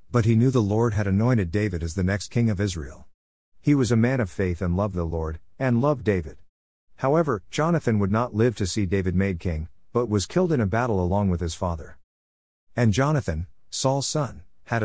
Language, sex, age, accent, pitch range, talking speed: English, male, 50-69, American, 90-115 Hz, 210 wpm